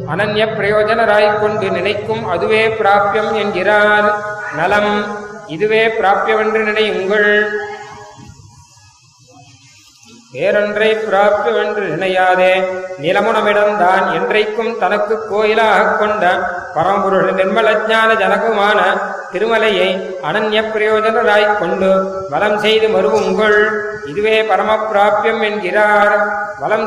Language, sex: Tamil, male